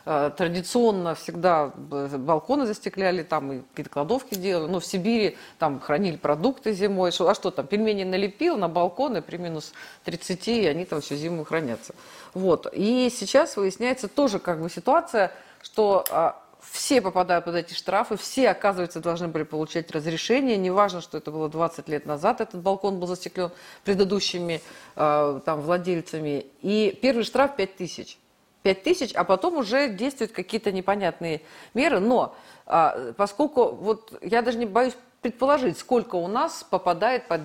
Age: 40-59